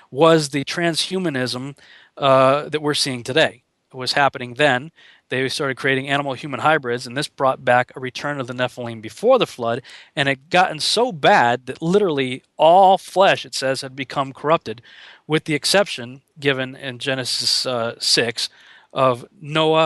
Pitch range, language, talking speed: 125-155 Hz, English, 165 wpm